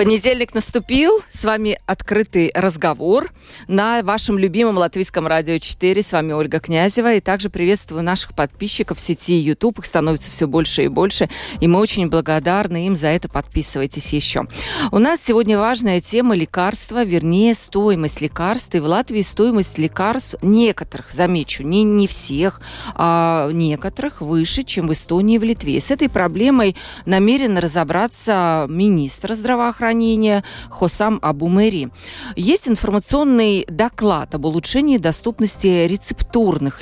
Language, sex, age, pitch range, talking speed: Russian, female, 40-59, 160-210 Hz, 135 wpm